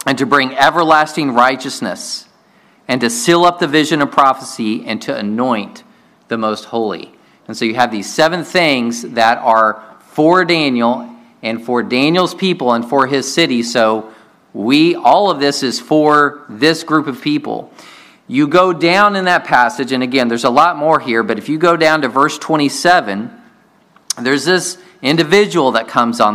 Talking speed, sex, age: 175 wpm, male, 40-59